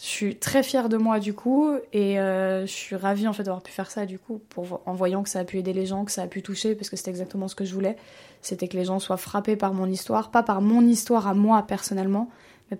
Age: 20-39